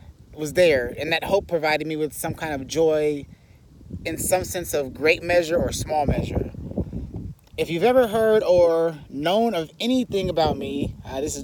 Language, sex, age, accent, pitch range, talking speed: English, male, 30-49, American, 145-185 Hz, 180 wpm